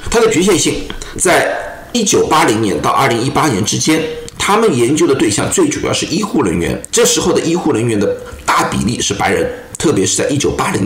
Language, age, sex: Chinese, 50-69, male